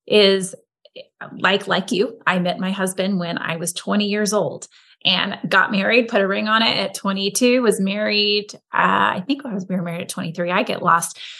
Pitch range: 195-225 Hz